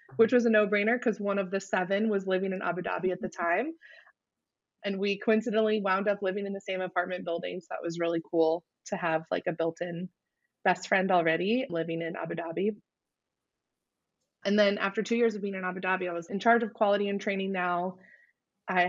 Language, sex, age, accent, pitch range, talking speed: English, female, 20-39, American, 180-215 Hz, 205 wpm